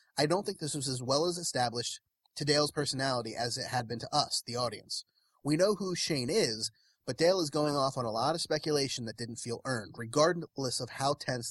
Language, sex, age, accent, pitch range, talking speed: English, male, 30-49, American, 120-160 Hz, 225 wpm